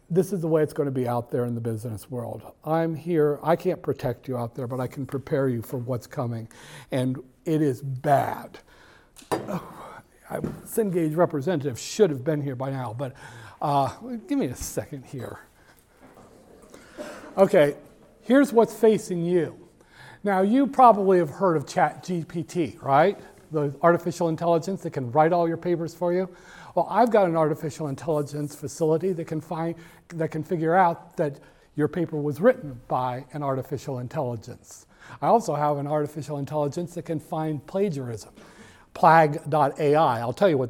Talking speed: 160 wpm